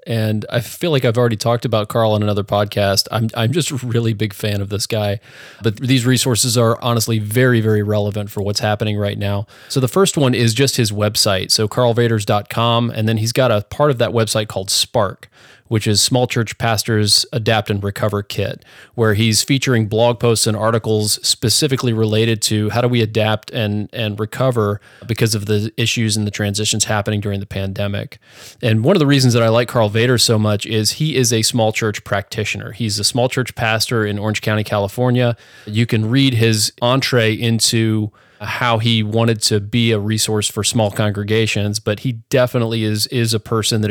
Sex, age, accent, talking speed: male, 30-49, American, 200 wpm